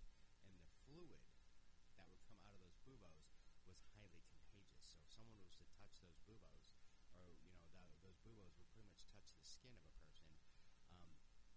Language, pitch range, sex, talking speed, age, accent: English, 85-105 Hz, male, 175 wpm, 30-49, American